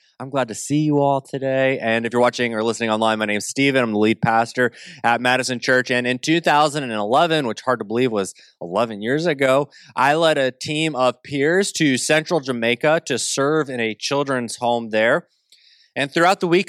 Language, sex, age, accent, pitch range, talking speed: English, male, 20-39, American, 110-140 Hz, 200 wpm